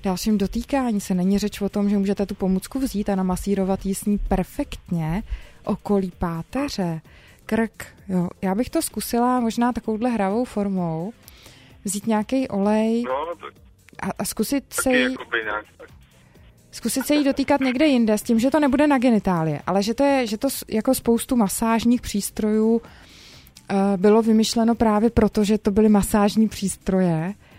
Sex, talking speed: female, 145 wpm